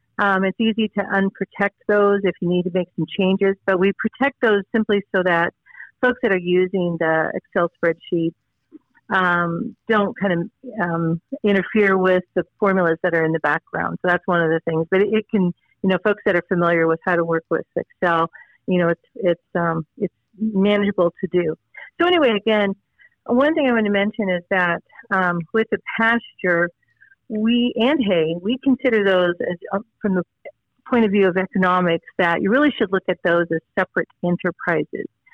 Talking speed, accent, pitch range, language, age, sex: 185 wpm, American, 175-215 Hz, English, 40-59, female